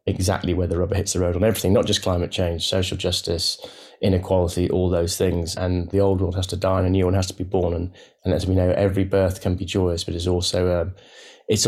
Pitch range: 95-105 Hz